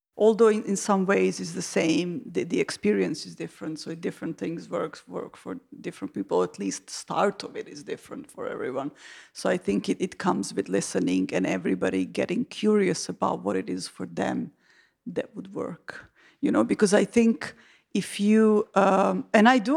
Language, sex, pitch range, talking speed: English, female, 175-215 Hz, 190 wpm